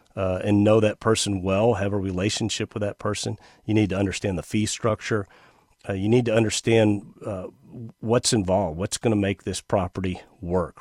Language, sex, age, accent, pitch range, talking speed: English, male, 40-59, American, 100-120 Hz, 190 wpm